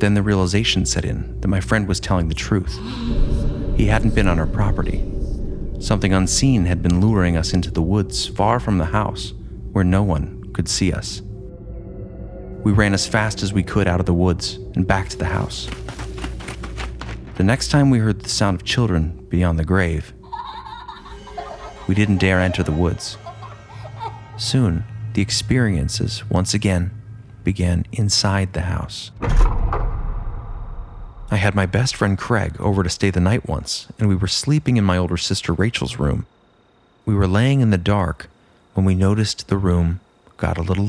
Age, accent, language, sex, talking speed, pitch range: 30-49, American, English, male, 170 wpm, 90-110 Hz